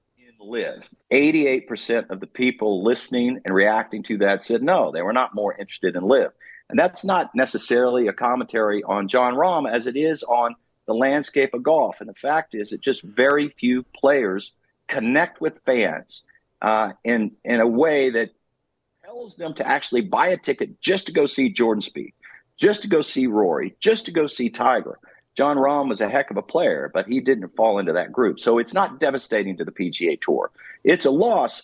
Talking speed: 195 wpm